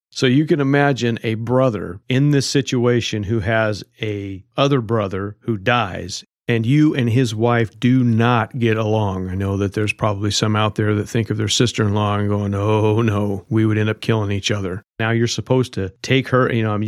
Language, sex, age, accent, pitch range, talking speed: English, male, 40-59, American, 100-115 Hz, 210 wpm